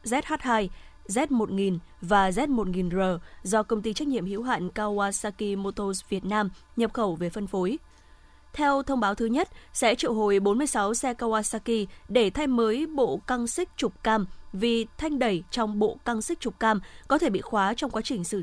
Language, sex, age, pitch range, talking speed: Vietnamese, female, 20-39, 200-250 Hz, 185 wpm